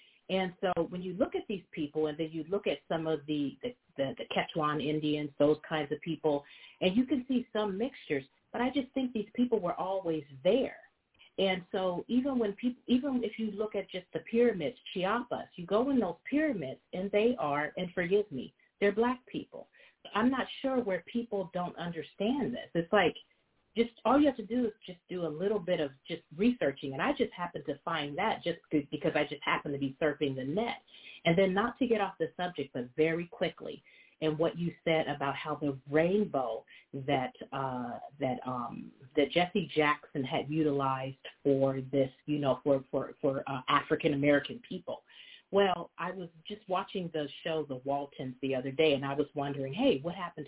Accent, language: American, English